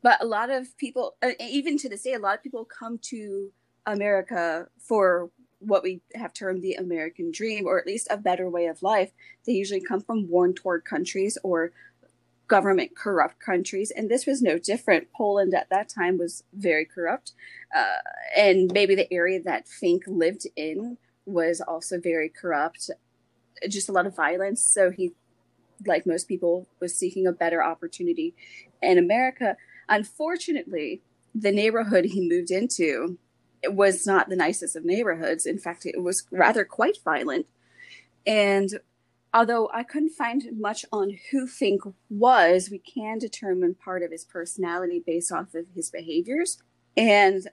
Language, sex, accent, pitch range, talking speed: English, female, American, 180-235 Hz, 160 wpm